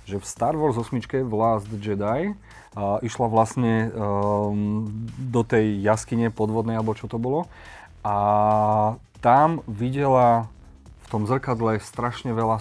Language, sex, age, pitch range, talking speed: Slovak, male, 30-49, 110-125 Hz, 130 wpm